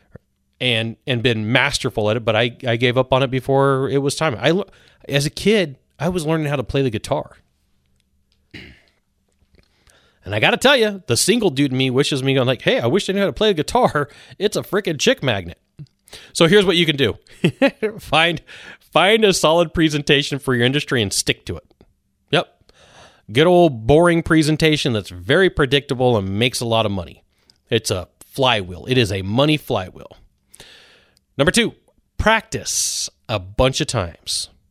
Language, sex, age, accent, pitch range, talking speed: English, male, 30-49, American, 100-145 Hz, 185 wpm